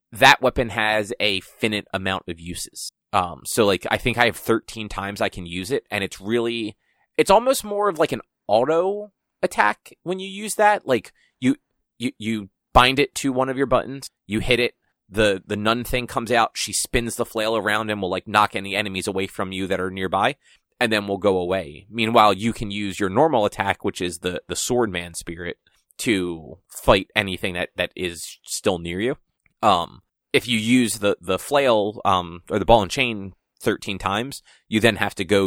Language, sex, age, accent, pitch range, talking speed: English, male, 30-49, American, 95-120 Hz, 205 wpm